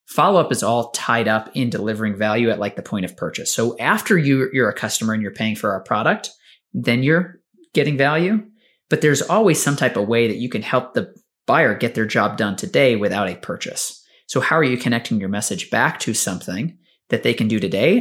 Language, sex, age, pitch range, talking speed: English, male, 30-49, 105-130 Hz, 215 wpm